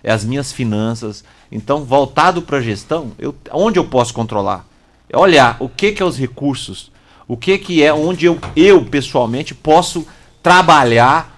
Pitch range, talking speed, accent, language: 125-180 Hz, 170 wpm, Brazilian, Portuguese